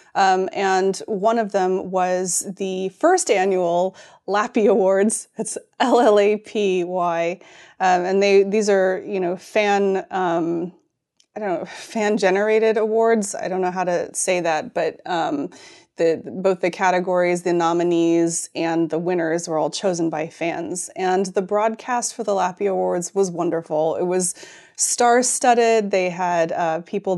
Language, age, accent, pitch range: English, 30-49, American, 170-210 Hz